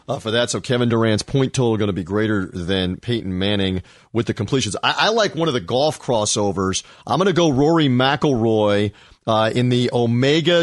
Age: 40-59